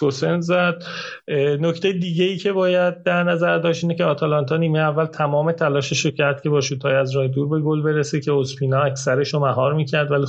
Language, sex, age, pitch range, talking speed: Persian, male, 30-49, 135-160 Hz, 195 wpm